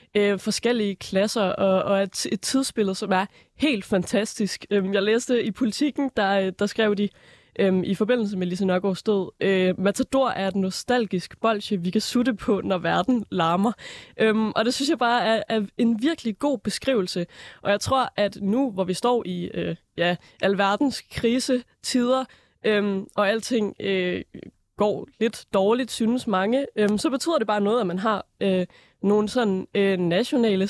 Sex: female